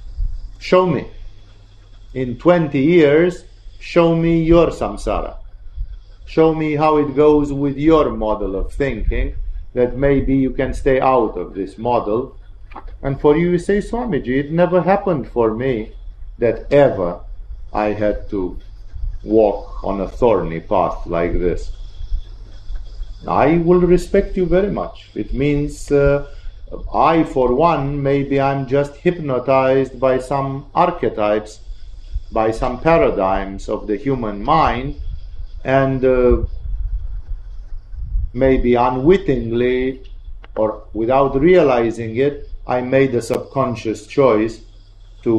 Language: English